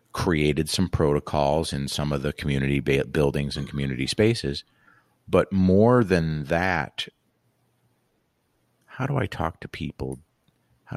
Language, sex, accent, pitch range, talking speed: English, male, American, 75-90 Hz, 125 wpm